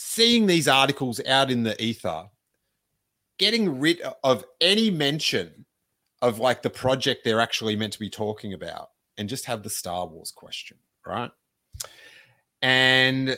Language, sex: English, male